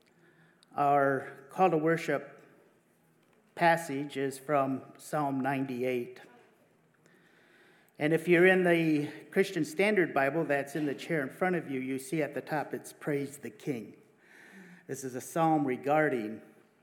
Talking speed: 140 wpm